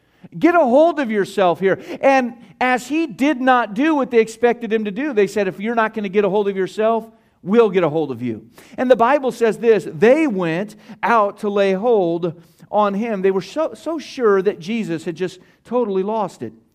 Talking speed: 220 wpm